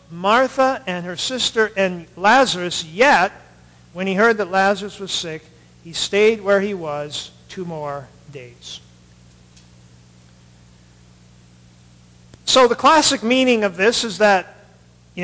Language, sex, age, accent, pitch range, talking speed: English, male, 50-69, American, 140-220 Hz, 120 wpm